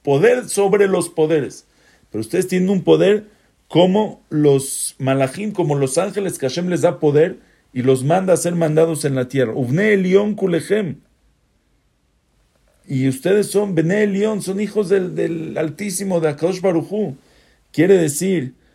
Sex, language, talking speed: male, English, 140 wpm